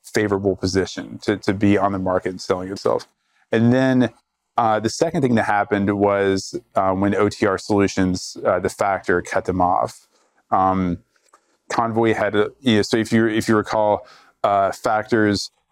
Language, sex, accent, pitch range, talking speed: English, male, American, 95-110 Hz, 155 wpm